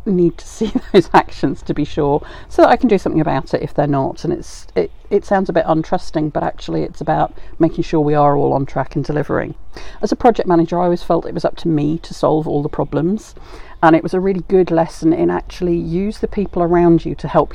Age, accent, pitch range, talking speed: 50-69, British, 150-180 Hz, 250 wpm